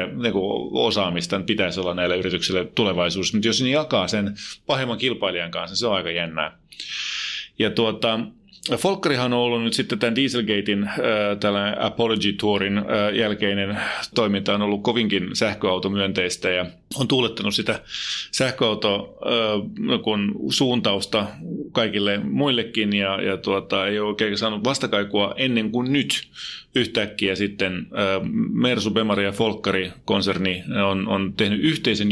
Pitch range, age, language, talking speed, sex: 95-115 Hz, 30-49, Finnish, 120 wpm, male